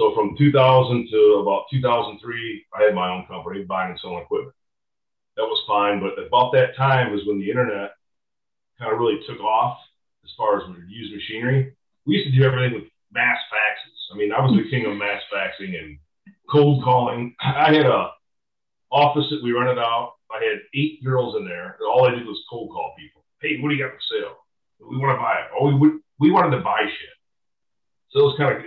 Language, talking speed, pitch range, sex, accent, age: English, 215 wpm, 105-155 Hz, male, American, 40-59